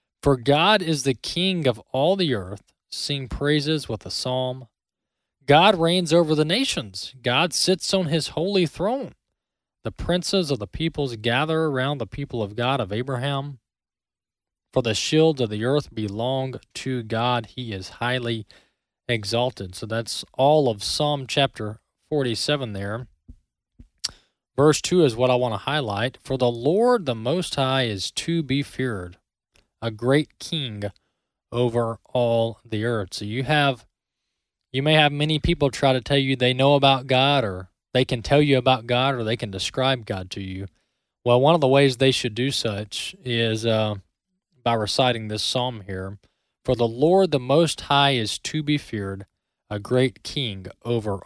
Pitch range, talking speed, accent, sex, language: 110-145 Hz, 170 wpm, American, male, English